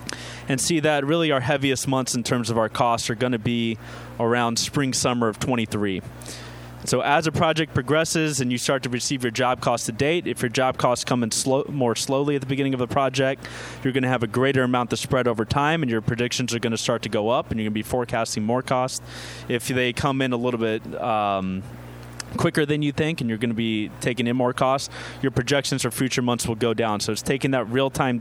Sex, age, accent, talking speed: male, 20-39, American, 240 wpm